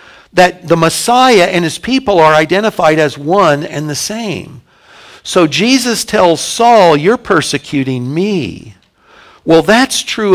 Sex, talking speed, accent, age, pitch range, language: male, 135 wpm, American, 60-79, 145-185 Hz, English